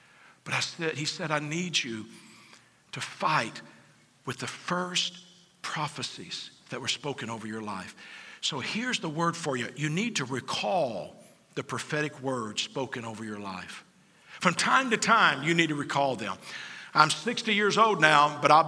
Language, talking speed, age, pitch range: English, 165 wpm, 50-69, 140-180 Hz